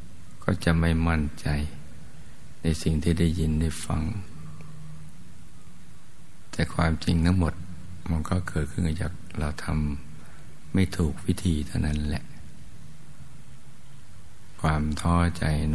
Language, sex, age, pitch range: Thai, male, 60-79, 80-90 Hz